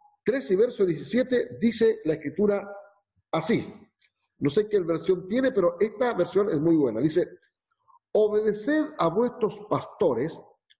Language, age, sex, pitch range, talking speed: Spanish, 50-69, male, 145-235 Hz, 130 wpm